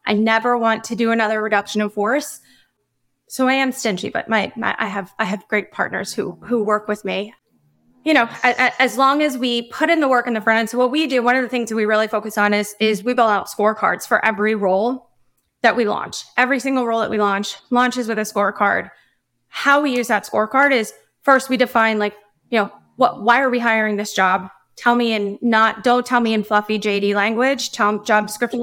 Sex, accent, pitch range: female, American, 210-245 Hz